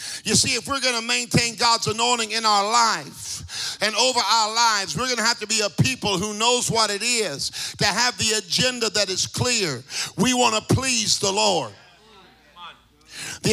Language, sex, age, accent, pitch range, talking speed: English, male, 50-69, American, 215-260 Hz, 190 wpm